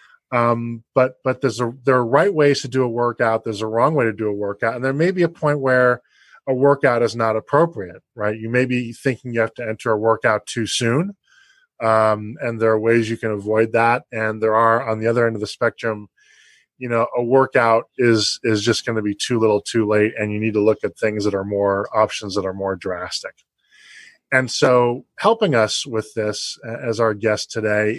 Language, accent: English, American